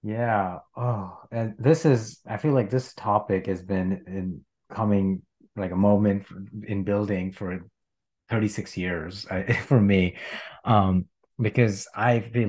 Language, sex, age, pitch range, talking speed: English, male, 30-49, 85-105 Hz, 140 wpm